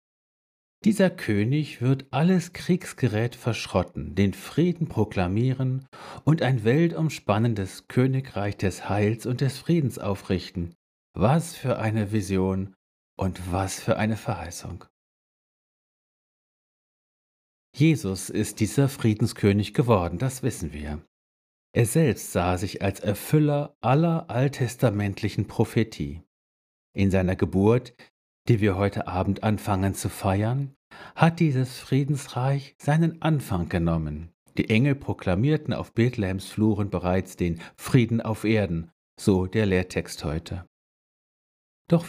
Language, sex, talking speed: German, male, 110 wpm